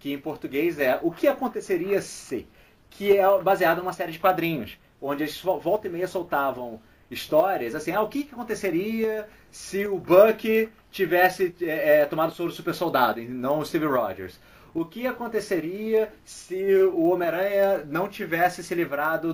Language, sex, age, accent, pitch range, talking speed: Portuguese, male, 30-49, Brazilian, 145-215 Hz, 175 wpm